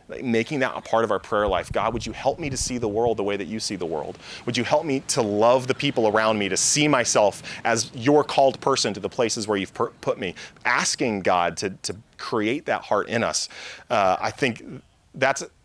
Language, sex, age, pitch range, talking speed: English, male, 30-49, 115-135 Hz, 235 wpm